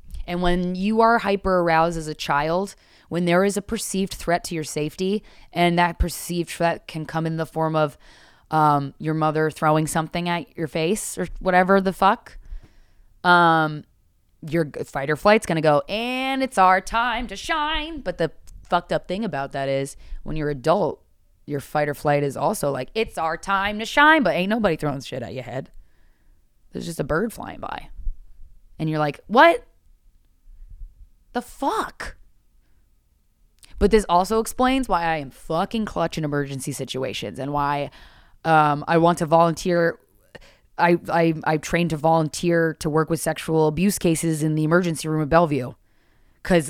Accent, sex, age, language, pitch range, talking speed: American, female, 20-39, English, 150-195 Hz, 175 wpm